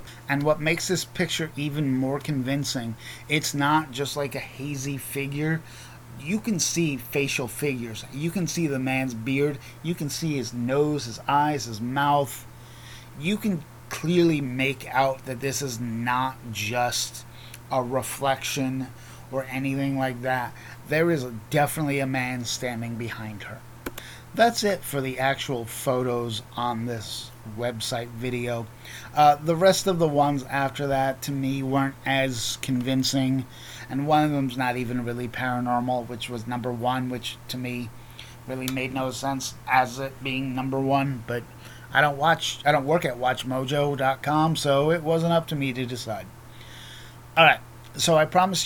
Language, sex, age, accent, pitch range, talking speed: English, male, 30-49, American, 120-145 Hz, 160 wpm